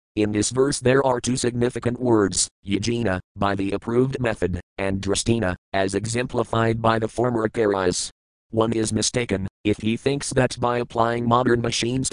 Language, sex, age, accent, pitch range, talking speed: English, male, 40-59, American, 100-120 Hz, 160 wpm